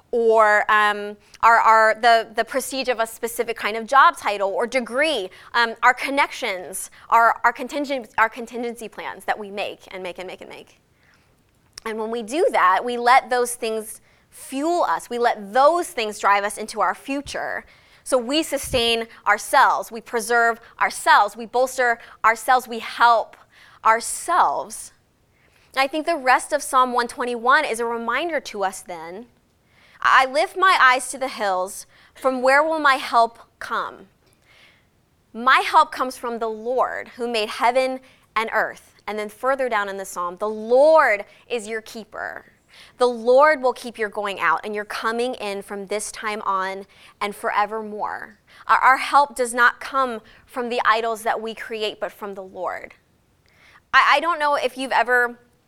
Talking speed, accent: 170 wpm, American